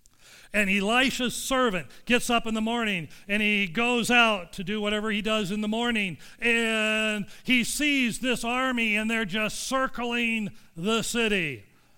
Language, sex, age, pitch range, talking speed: English, male, 40-59, 175-240 Hz, 155 wpm